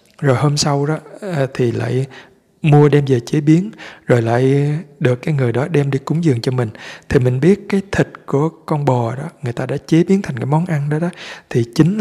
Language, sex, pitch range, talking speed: Vietnamese, male, 125-155 Hz, 225 wpm